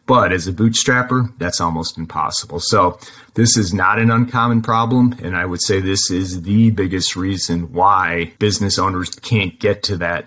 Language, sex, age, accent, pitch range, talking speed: English, male, 30-49, American, 90-110 Hz, 175 wpm